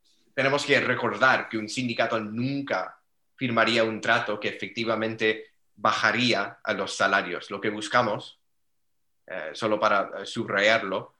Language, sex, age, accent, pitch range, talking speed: English, male, 30-49, Spanish, 105-125 Hz, 125 wpm